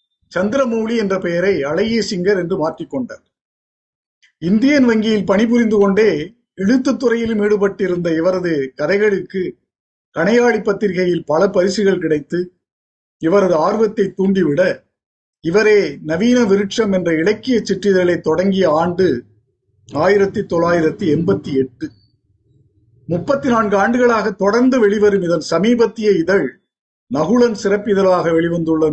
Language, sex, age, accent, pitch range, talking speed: Tamil, male, 50-69, native, 175-220 Hz, 90 wpm